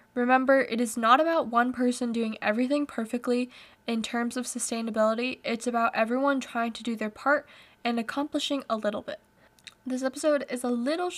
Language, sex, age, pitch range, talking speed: English, female, 10-29, 225-265 Hz, 170 wpm